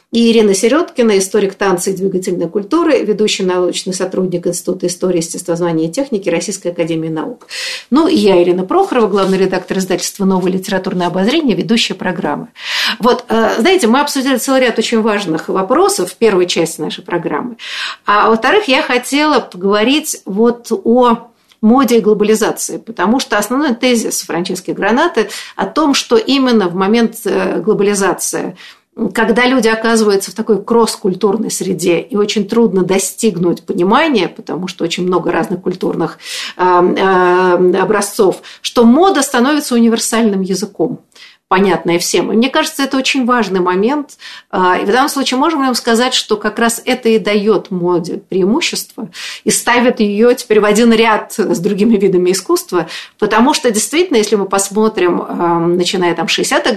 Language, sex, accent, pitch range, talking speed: Russian, female, native, 180-235 Hz, 145 wpm